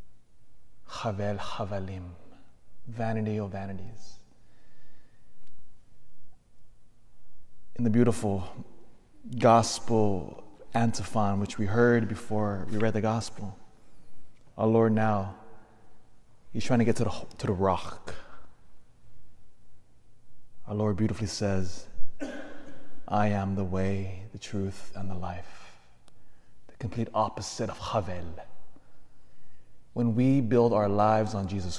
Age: 30-49